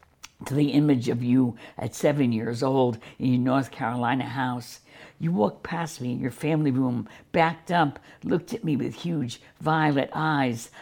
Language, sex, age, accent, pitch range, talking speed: English, female, 60-79, American, 125-155 Hz, 170 wpm